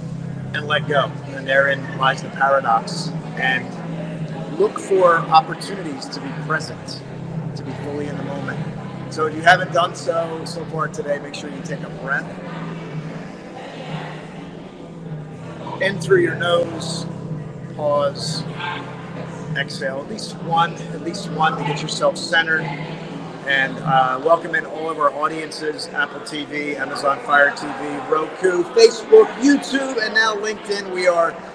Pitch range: 150-175 Hz